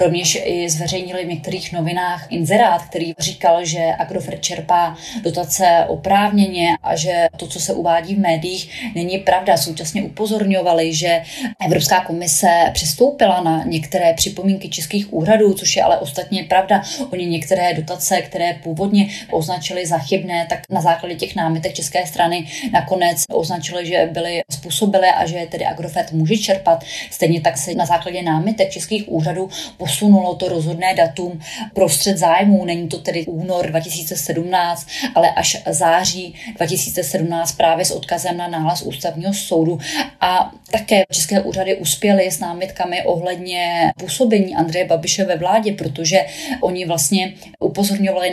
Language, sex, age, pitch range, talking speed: Czech, female, 30-49, 170-190 Hz, 140 wpm